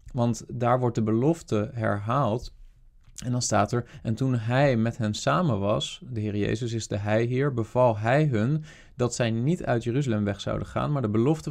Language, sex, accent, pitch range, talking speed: Dutch, male, Dutch, 110-135 Hz, 195 wpm